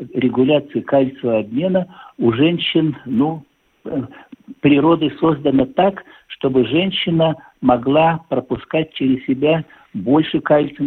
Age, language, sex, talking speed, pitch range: 60-79, Russian, male, 95 wpm, 125-160 Hz